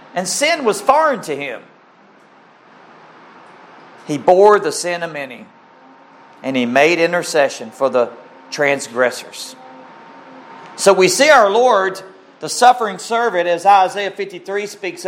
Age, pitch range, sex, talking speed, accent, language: 50-69, 155-210 Hz, male, 125 wpm, American, English